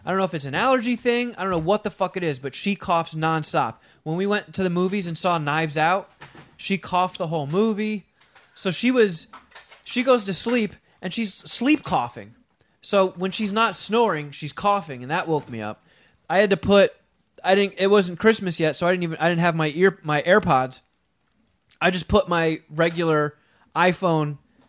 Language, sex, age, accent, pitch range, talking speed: English, male, 20-39, American, 145-185 Hz, 205 wpm